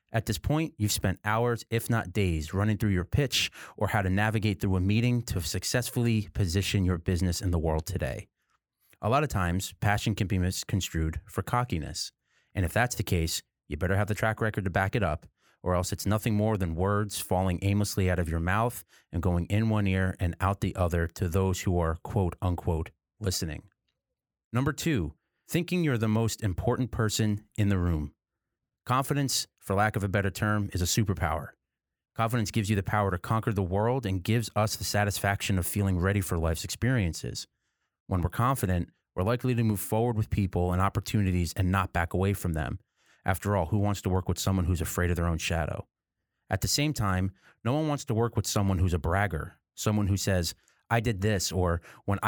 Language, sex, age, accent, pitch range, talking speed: English, male, 30-49, American, 90-110 Hz, 205 wpm